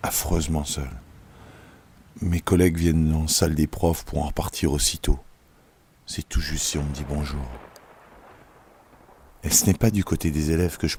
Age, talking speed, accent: 50-69, 175 wpm, French